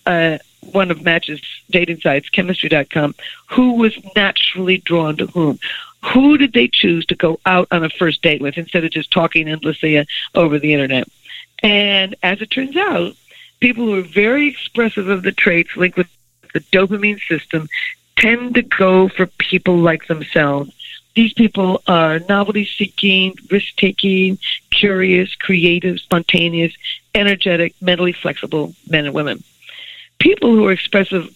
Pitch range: 165-200 Hz